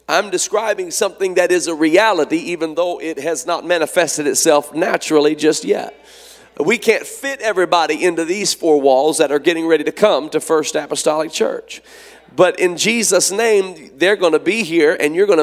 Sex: male